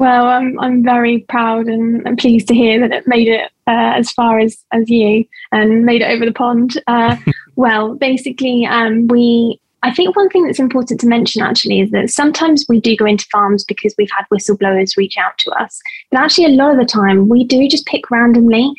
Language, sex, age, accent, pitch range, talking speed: English, female, 20-39, British, 210-250 Hz, 215 wpm